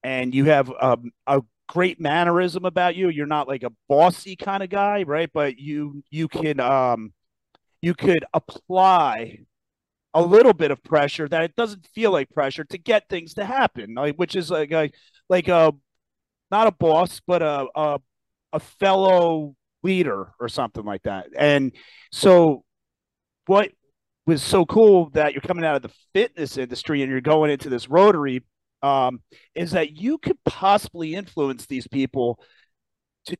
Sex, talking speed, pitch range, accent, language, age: male, 165 wpm, 140-185 Hz, American, English, 40-59